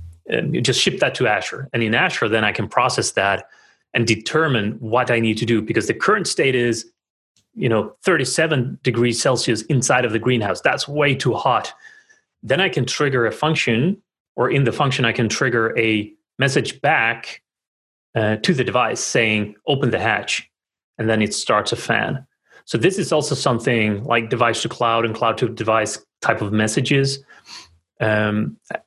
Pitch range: 110-135 Hz